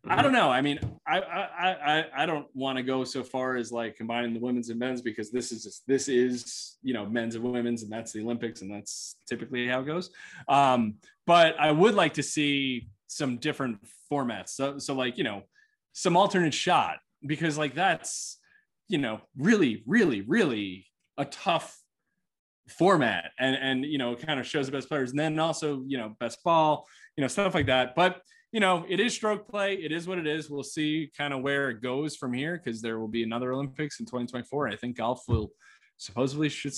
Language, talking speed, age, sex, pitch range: English, 210 wpm, 20-39, male, 125-175 Hz